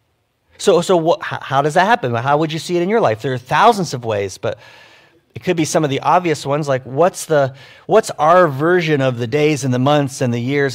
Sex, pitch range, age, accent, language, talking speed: male, 125-155 Hz, 40-59, American, English, 245 wpm